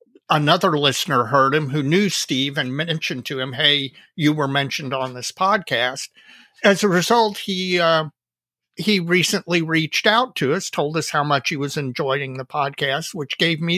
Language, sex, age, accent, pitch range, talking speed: English, male, 50-69, American, 140-180 Hz, 180 wpm